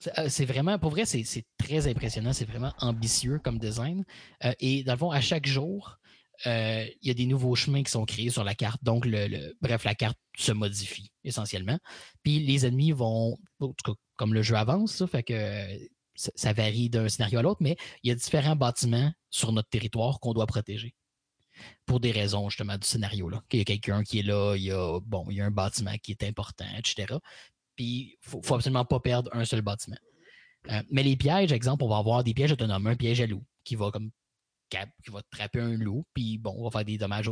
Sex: male